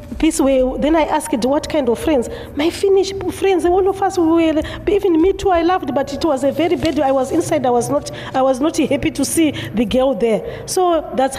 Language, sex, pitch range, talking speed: Finnish, female, 255-320 Hz, 230 wpm